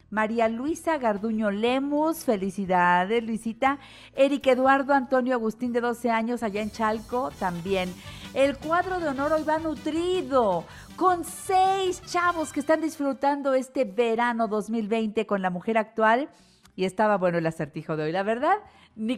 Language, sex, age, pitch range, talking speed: Spanish, female, 50-69, 185-270 Hz, 145 wpm